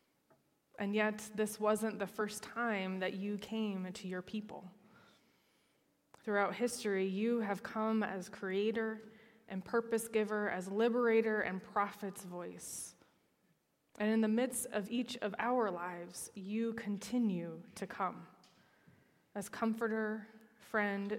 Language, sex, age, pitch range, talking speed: English, female, 20-39, 195-220 Hz, 120 wpm